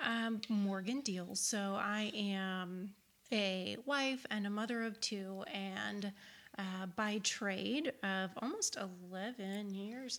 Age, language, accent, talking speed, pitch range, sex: 30-49, English, American, 125 wpm, 195-225 Hz, female